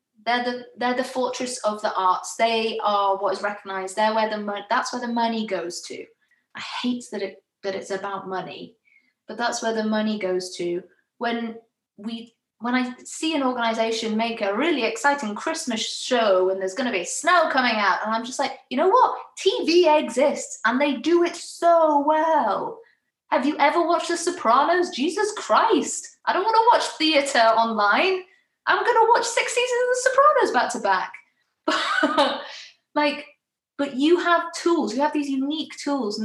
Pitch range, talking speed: 220-305 Hz, 180 wpm